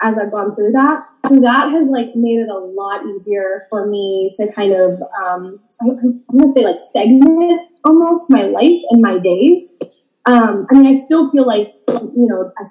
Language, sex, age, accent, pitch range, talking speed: English, female, 20-39, American, 205-270 Hz, 195 wpm